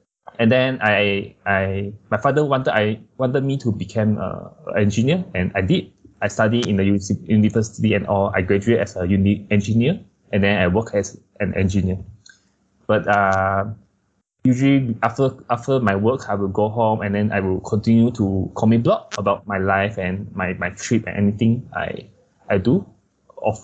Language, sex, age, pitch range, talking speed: English, male, 20-39, 100-115 Hz, 180 wpm